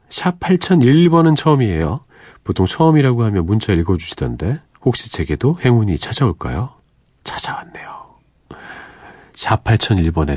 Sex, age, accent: male, 40-59, native